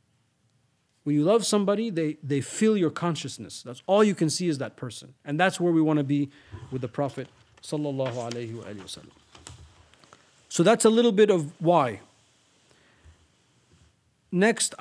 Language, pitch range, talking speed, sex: English, 130-180 Hz, 145 wpm, male